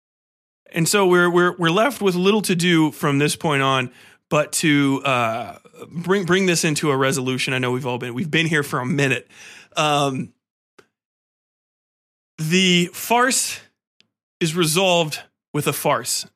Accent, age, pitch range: American, 30-49, 140-180 Hz